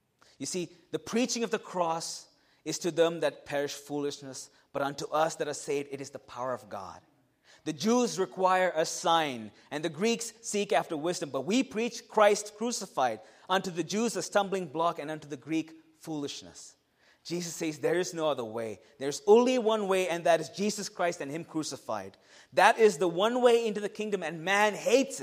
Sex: male